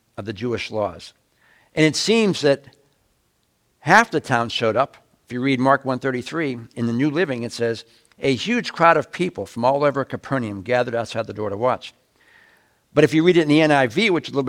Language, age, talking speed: English, 60-79, 210 wpm